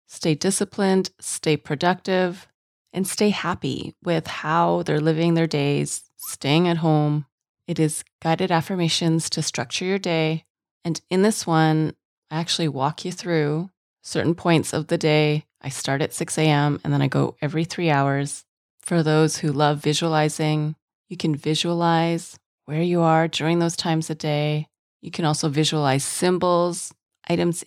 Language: English